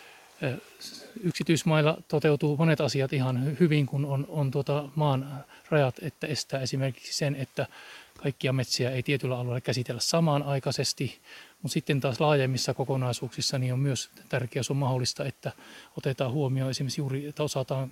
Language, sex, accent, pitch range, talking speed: Finnish, male, native, 130-150 Hz, 135 wpm